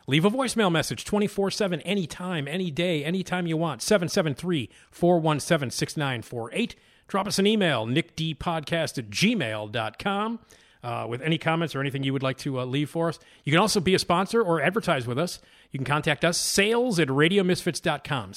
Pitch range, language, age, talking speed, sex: 130-175 Hz, English, 40-59, 165 wpm, male